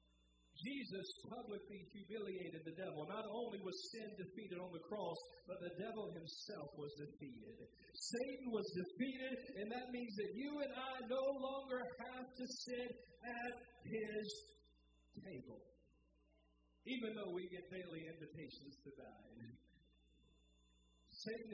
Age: 50-69